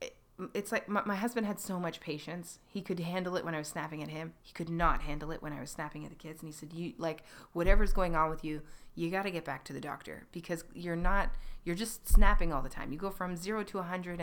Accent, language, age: American, English, 30-49